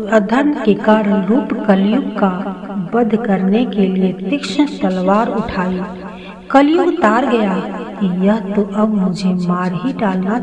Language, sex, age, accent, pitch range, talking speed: Hindi, female, 50-69, native, 195-240 Hz, 120 wpm